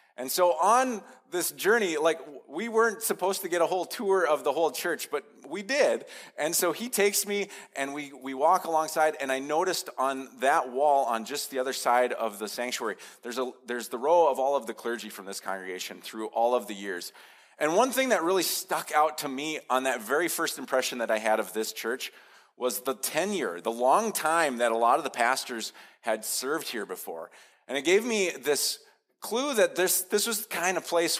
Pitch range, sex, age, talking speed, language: 120-170 Hz, male, 30-49, 215 wpm, English